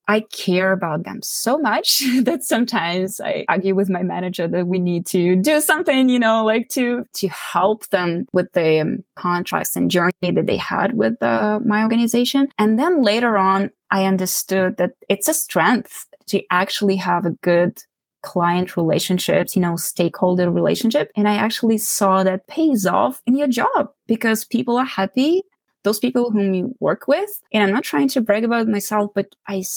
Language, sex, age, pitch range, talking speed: English, female, 20-39, 190-250 Hz, 180 wpm